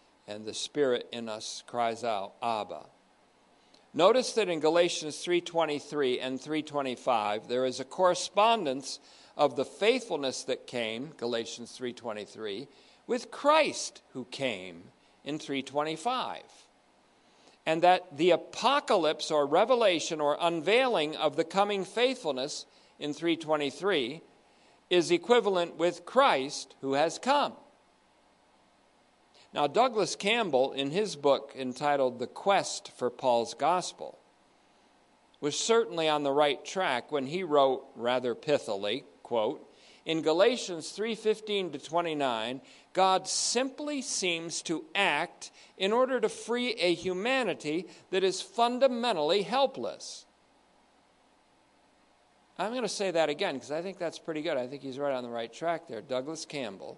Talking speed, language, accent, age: 125 wpm, English, American, 50-69